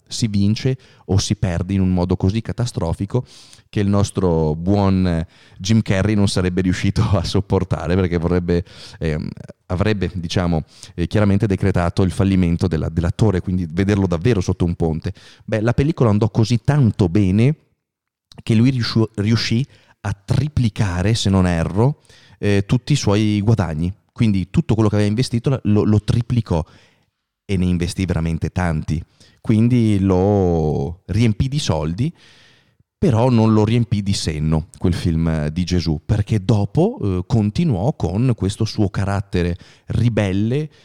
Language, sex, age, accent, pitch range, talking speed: Italian, male, 30-49, native, 90-115 Hz, 140 wpm